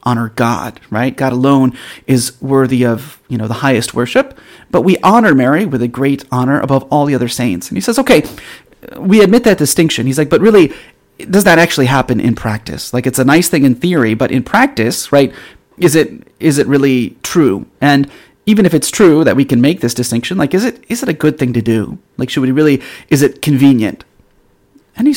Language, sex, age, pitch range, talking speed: English, male, 30-49, 135-200 Hz, 215 wpm